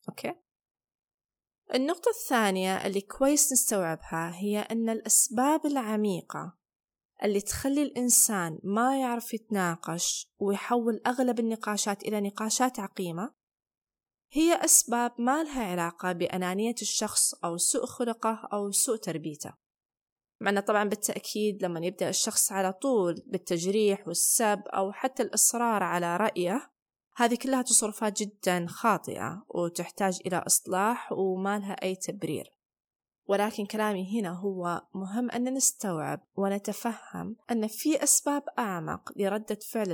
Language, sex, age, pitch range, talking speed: Arabic, female, 20-39, 180-230 Hz, 115 wpm